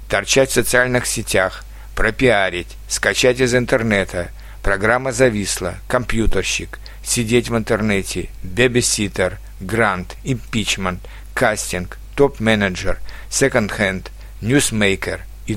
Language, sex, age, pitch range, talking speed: Russian, male, 60-79, 100-130 Hz, 90 wpm